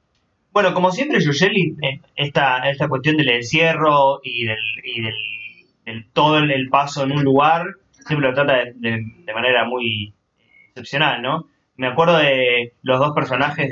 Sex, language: male, Spanish